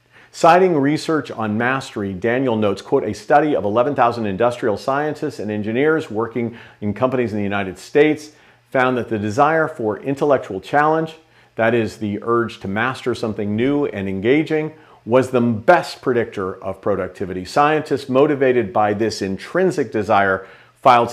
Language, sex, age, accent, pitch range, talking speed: English, male, 50-69, American, 105-145 Hz, 150 wpm